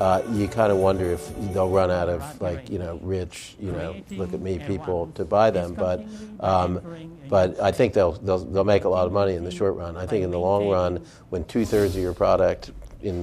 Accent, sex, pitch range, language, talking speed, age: American, male, 85-95 Hz, English, 240 wpm, 50-69